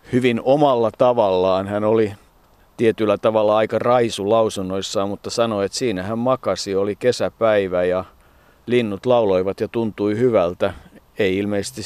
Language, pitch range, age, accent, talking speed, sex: Finnish, 100-120 Hz, 50-69, native, 130 wpm, male